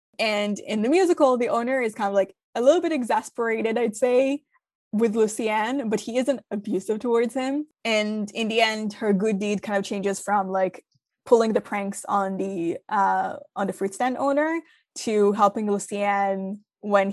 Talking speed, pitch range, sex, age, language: 180 wpm, 200-240 Hz, female, 20-39, English